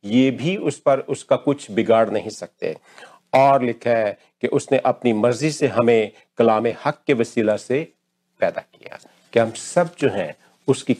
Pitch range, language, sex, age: 115-145 Hz, Hindi, male, 50-69